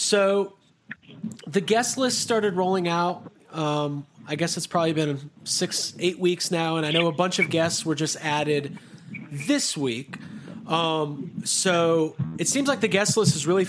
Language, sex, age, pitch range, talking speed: English, male, 30-49, 145-185 Hz, 170 wpm